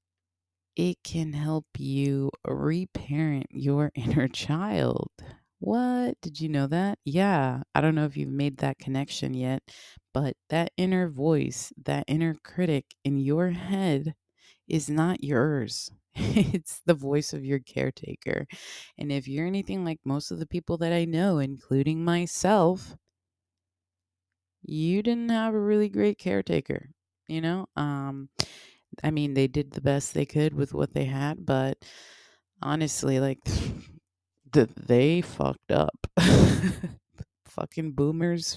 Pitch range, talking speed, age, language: 130-160 Hz, 135 wpm, 20-39, English